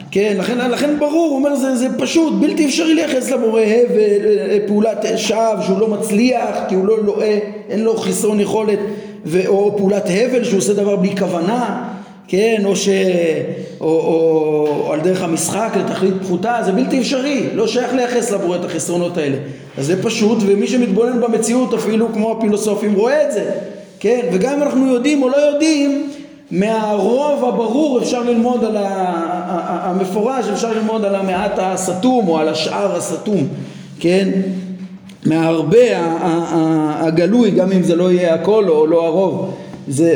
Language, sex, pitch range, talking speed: Hebrew, male, 175-225 Hz, 160 wpm